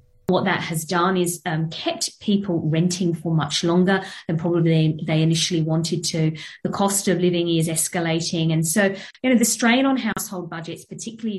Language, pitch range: Croatian, 170-210 Hz